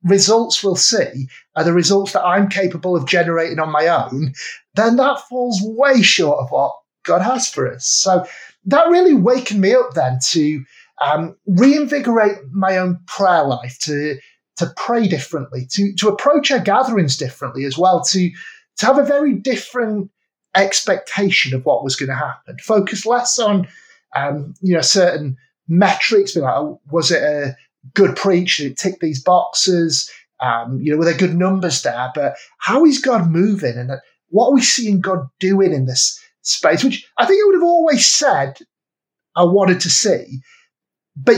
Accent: British